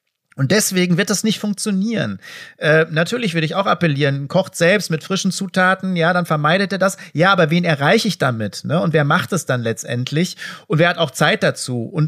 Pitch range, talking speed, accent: 140-175 Hz, 210 wpm, German